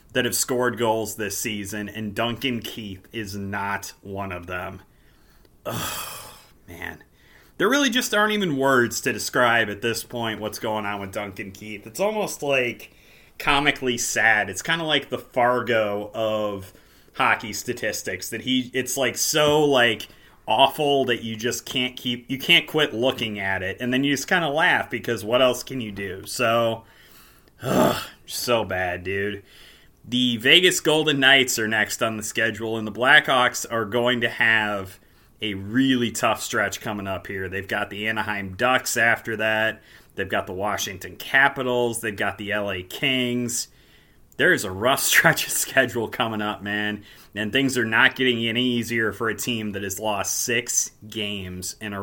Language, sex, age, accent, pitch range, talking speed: English, male, 30-49, American, 105-125 Hz, 175 wpm